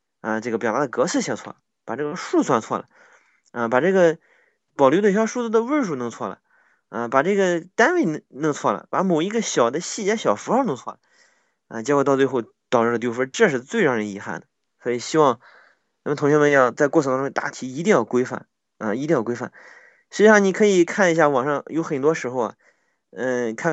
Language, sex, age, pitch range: Chinese, male, 20-39, 120-180 Hz